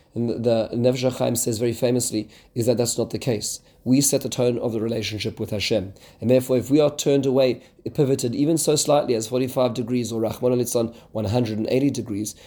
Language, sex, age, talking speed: English, male, 30-49, 190 wpm